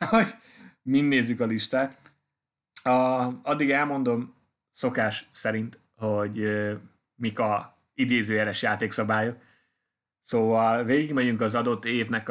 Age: 20-39